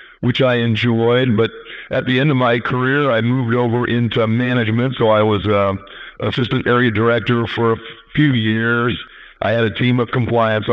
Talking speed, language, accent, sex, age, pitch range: 180 wpm, English, American, male, 50-69, 110-125 Hz